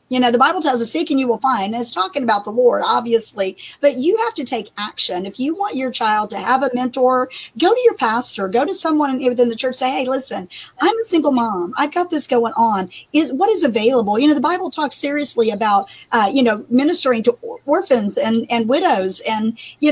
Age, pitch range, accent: 40-59, 225-290 Hz, American